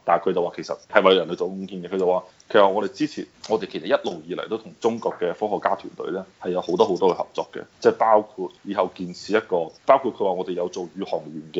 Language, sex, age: Chinese, male, 20-39